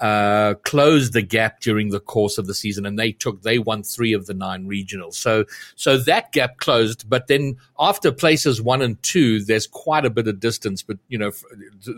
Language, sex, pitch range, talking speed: English, male, 105-130 Hz, 205 wpm